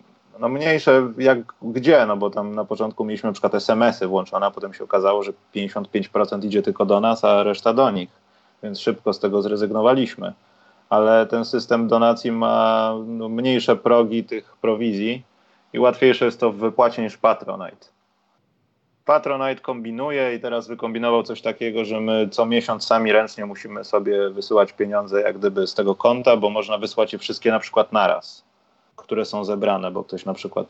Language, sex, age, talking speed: Polish, male, 30-49, 170 wpm